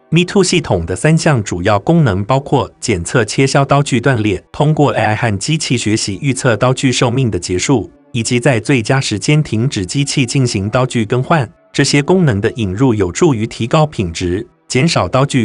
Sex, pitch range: male, 110-145 Hz